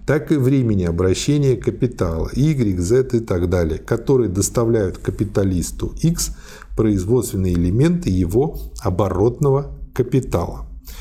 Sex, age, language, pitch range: male, 50-69, Russian, 100-135 Hz